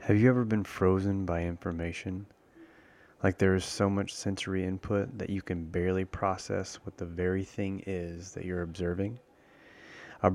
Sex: male